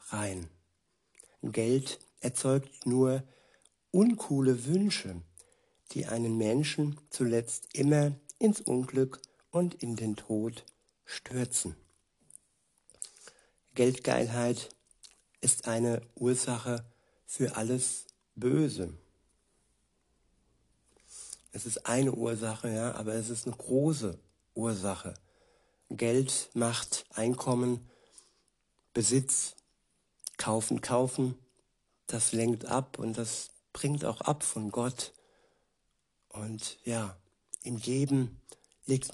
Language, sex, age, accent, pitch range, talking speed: German, male, 60-79, German, 110-130 Hz, 85 wpm